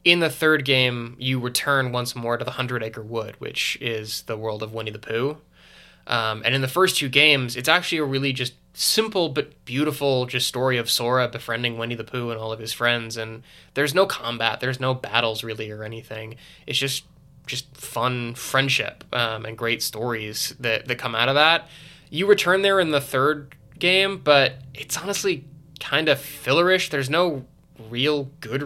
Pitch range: 115-145 Hz